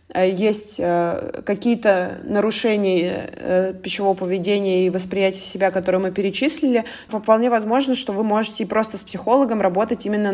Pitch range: 190-215 Hz